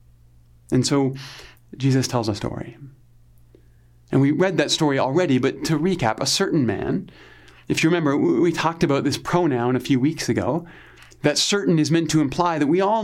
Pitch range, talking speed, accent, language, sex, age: 115-155 Hz, 180 wpm, American, English, male, 30-49